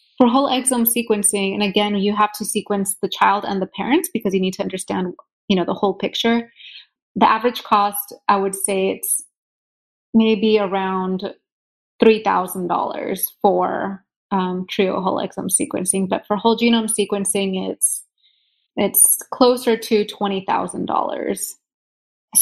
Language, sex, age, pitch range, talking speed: English, female, 20-39, 195-230 Hz, 135 wpm